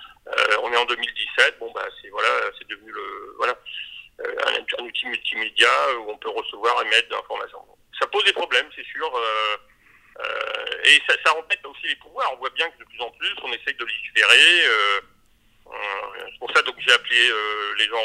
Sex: male